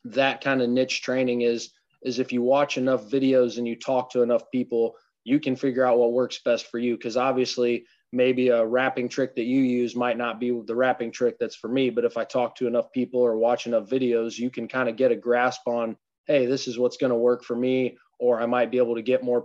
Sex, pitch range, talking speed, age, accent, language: male, 120-130 Hz, 250 wpm, 20-39, American, English